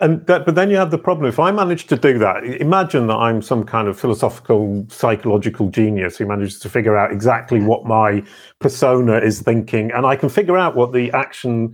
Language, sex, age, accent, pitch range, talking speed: English, male, 40-59, British, 105-130 Hz, 215 wpm